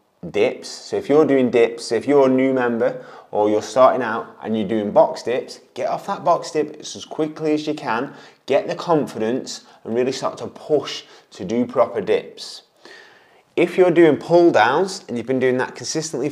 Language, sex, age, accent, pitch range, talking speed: English, male, 30-49, British, 130-175 Hz, 195 wpm